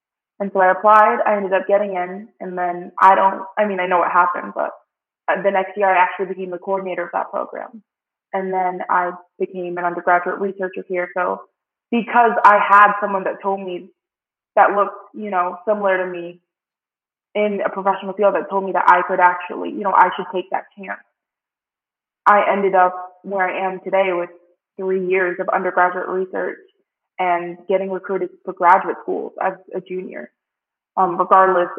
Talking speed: 180 wpm